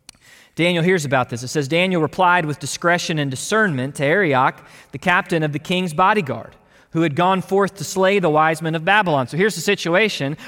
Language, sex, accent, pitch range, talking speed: English, male, American, 155-205 Hz, 200 wpm